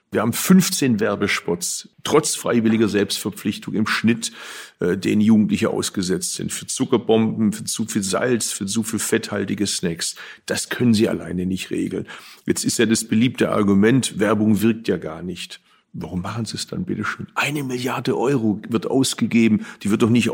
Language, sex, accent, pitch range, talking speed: German, male, German, 105-120 Hz, 170 wpm